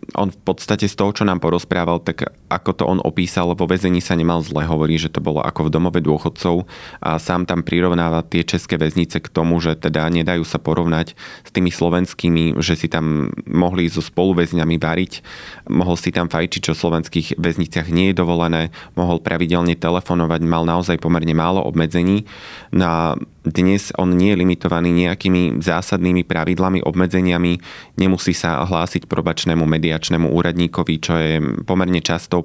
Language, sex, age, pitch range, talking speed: Slovak, male, 20-39, 80-90 Hz, 165 wpm